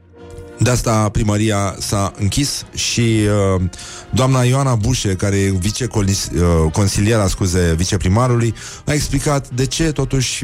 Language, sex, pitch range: Romanian, male, 100-125 Hz